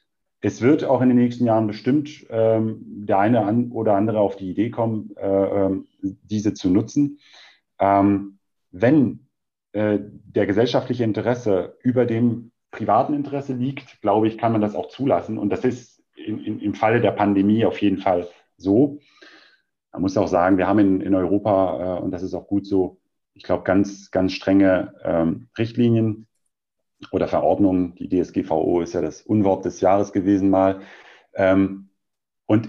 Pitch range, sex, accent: 95-110 Hz, male, German